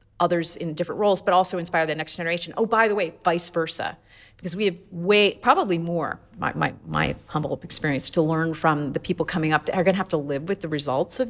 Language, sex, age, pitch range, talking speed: English, female, 40-59, 150-180 Hz, 240 wpm